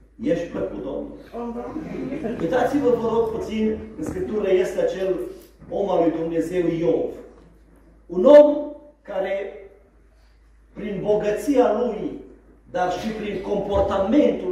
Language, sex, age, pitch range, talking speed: Romanian, male, 40-59, 200-275 Hz, 110 wpm